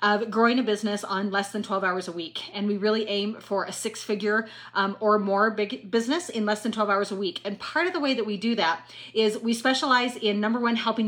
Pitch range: 200-230 Hz